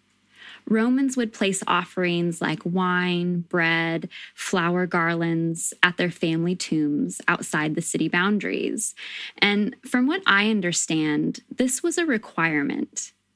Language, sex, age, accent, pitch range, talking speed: English, female, 10-29, American, 175-225 Hz, 115 wpm